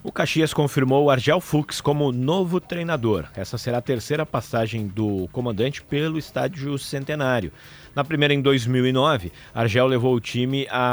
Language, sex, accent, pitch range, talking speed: Portuguese, male, Brazilian, 135-180 Hz, 155 wpm